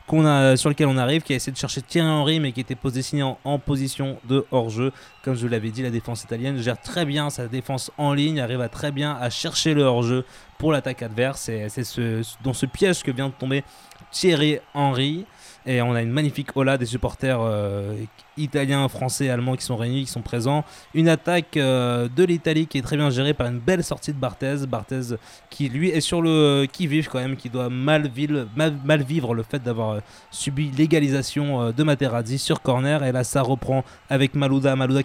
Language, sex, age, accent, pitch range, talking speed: French, male, 20-39, French, 125-145 Hz, 225 wpm